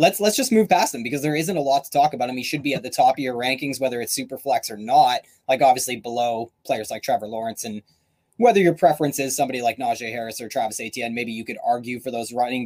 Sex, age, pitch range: male, 20-39, 120-165 Hz